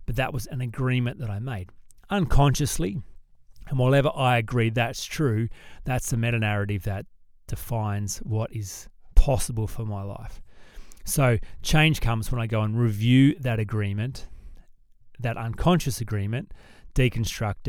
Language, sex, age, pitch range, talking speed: English, male, 30-49, 105-125 Hz, 140 wpm